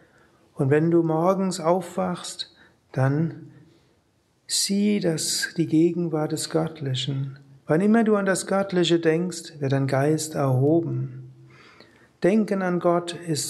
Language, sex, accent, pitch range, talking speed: German, male, German, 140-170 Hz, 120 wpm